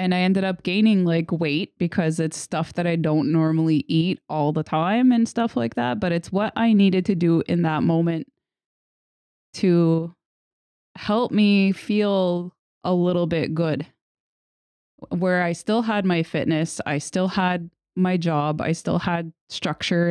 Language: English